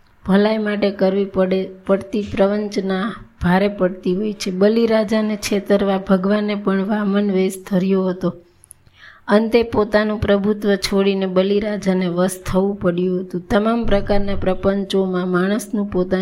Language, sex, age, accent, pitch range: Gujarati, female, 20-39, native, 185-210 Hz